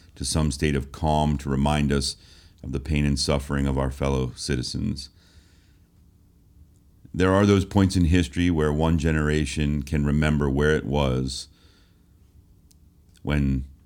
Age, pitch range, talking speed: 40-59, 70-85 Hz, 140 wpm